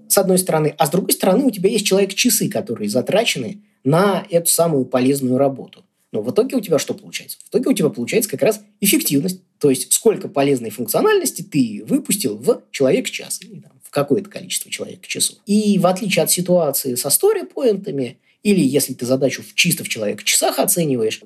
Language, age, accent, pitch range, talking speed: Russian, 20-39, native, 140-215 Hz, 180 wpm